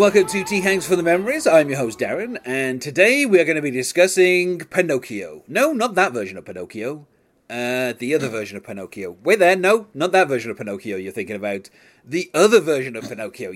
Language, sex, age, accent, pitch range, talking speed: English, male, 30-49, British, 120-175 Hz, 215 wpm